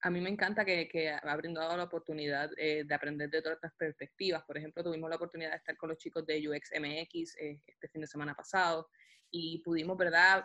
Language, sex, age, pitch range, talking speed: Spanish, female, 20-39, 160-190 Hz, 220 wpm